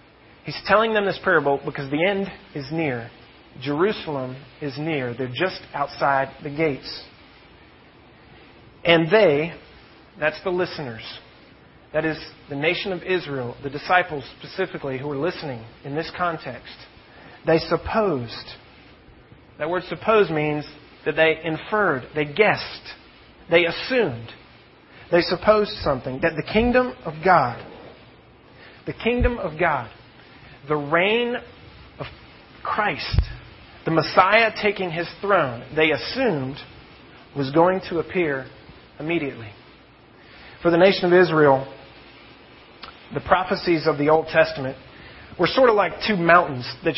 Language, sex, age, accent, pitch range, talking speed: English, male, 40-59, American, 140-185 Hz, 125 wpm